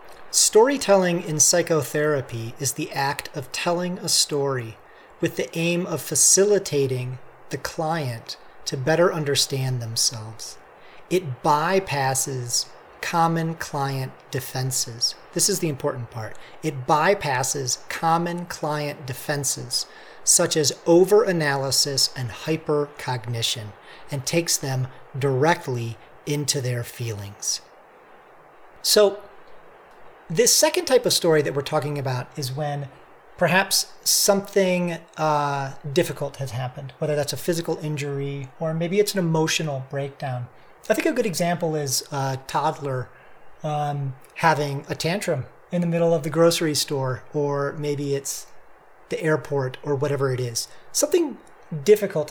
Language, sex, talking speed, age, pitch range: English, male, 125 wpm, 40-59, 135-170 Hz